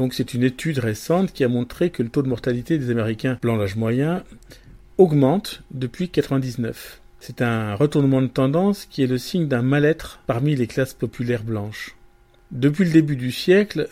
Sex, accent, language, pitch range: male, French, French, 120-155 Hz